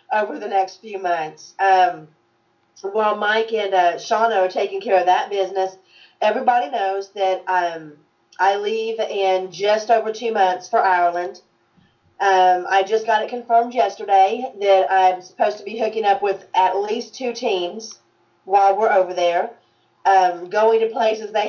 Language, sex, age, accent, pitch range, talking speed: English, female, 40-59, American, 185-225 Hz, 160 wpm